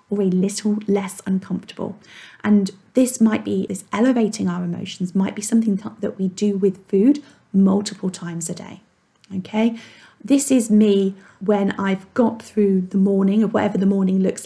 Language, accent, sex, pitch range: English, British, female, 190-220 Hz